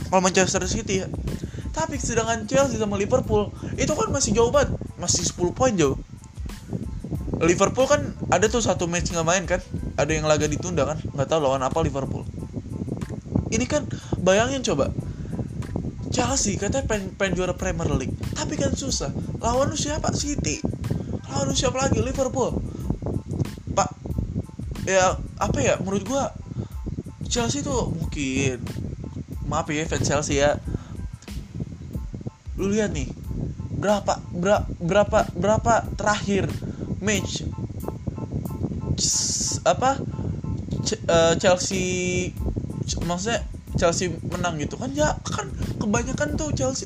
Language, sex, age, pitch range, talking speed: Indonesian, male, 20-39, 125-185 Hz, 125 wpm